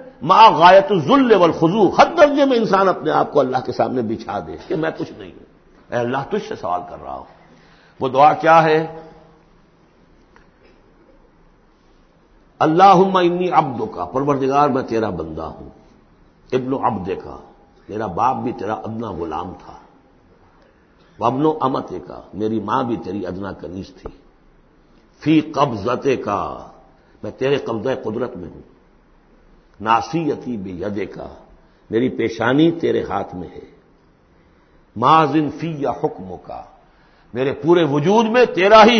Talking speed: 130 wpm